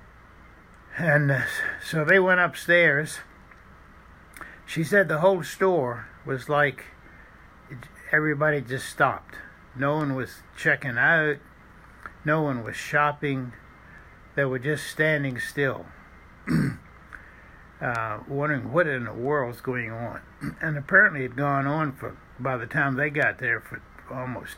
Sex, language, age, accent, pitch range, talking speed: male, English, 60-79, American, 125-155 Hz, 130 wpm